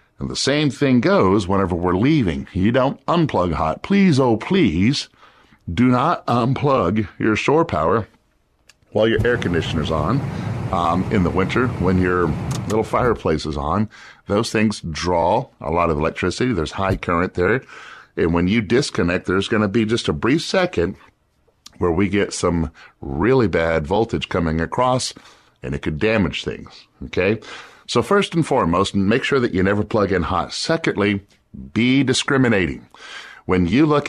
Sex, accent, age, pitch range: male, American, 50-69, 90-115 Hz